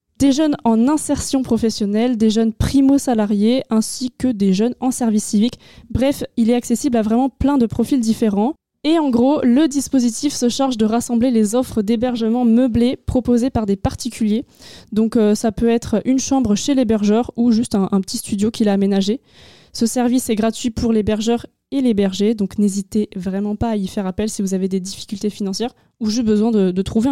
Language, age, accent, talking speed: French, 20-39, French, 200 wpm